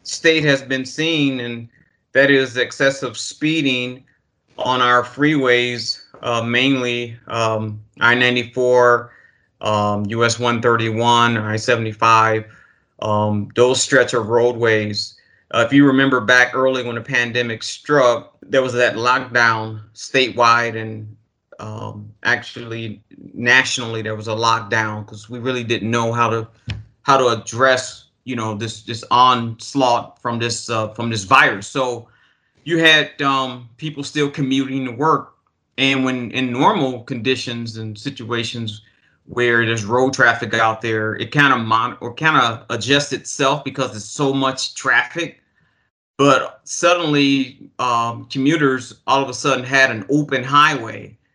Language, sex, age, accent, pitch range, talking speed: English, male, 30-49, American, 115-130 Hz, 135 wpm